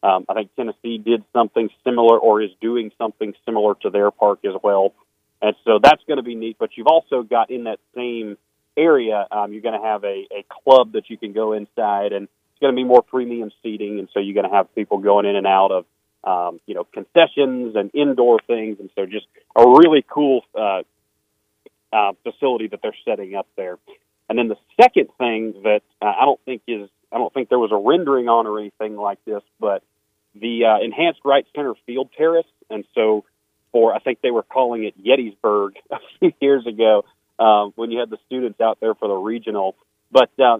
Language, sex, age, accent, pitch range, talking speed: English, male, 40-59, American, 105-135 Hz, 210 wpm